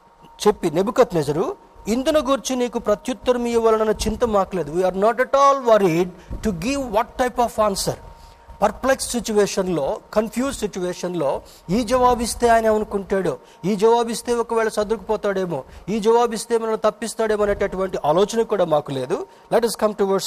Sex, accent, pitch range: male, native, 180-230 Hz